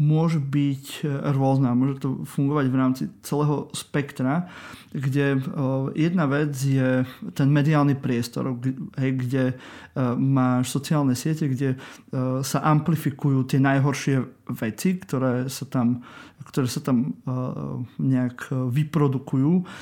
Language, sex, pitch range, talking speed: Slovak, male, 130-150 Hz, 105 wpm